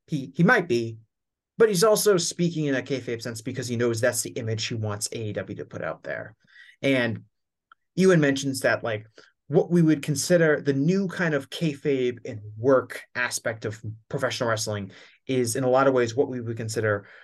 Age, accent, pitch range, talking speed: 30-49, American, 110-140 Hz, 190 wpm